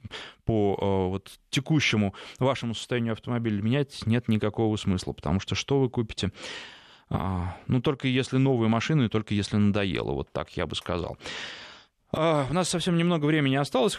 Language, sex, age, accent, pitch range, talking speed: Russian, male, 20-39, native, 110-145 Hz, 145 wpm